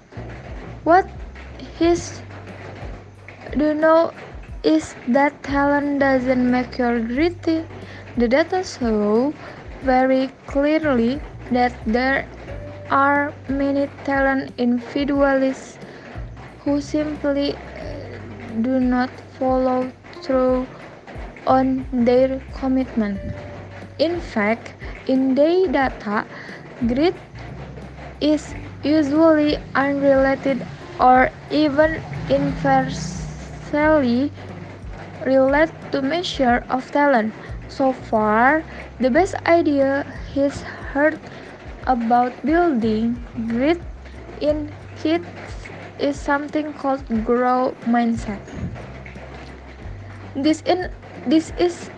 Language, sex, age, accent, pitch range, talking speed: English, female, 20-39, Indonesian, 240-290 Hz, 80 wpm